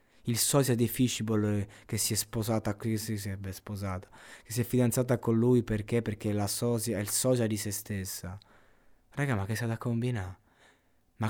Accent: native